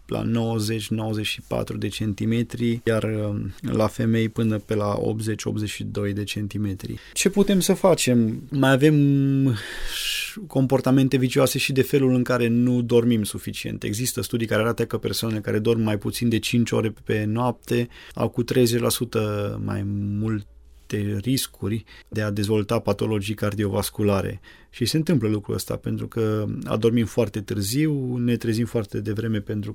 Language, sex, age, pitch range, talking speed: Romanian, male, 20-39, 105-125 Hz, 140 wpm